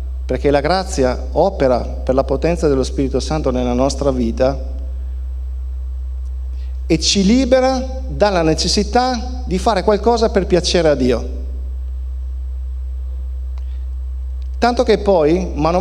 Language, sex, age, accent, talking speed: Italian, male, 50-69, native, 110 wpm